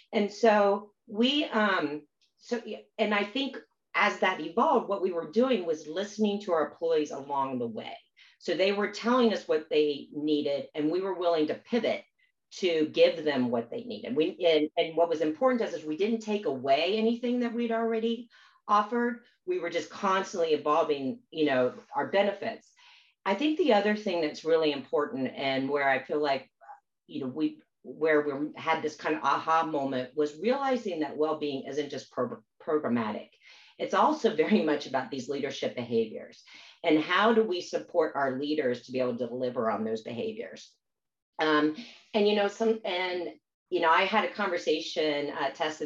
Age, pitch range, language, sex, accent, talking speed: 40-59, 150-230 Hz, English, female, American, 180 wpm